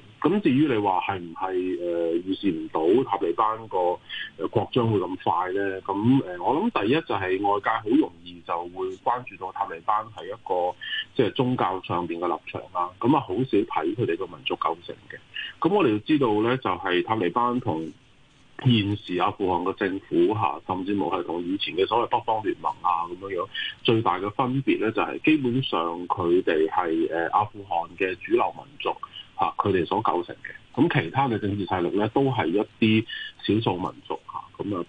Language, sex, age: Chinese, male, 30-49